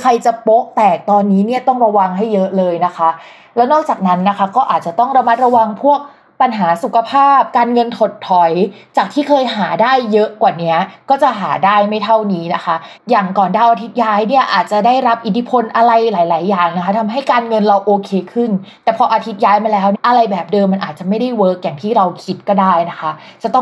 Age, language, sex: 20-39, Thai, female